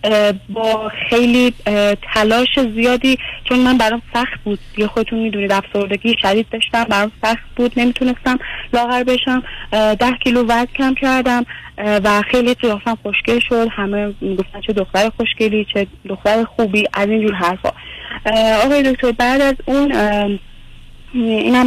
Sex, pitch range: female, 205-235 Hz